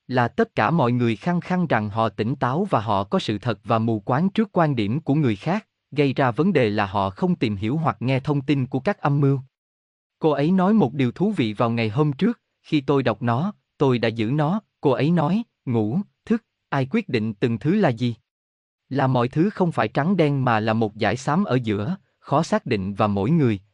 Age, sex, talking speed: 20-39, male, 235 wpm